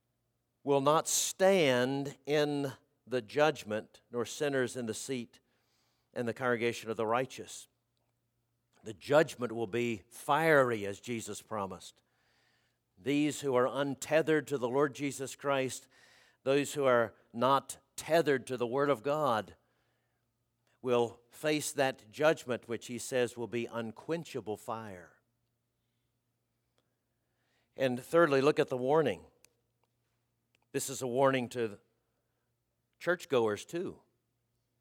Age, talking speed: 50-69, 115 wpm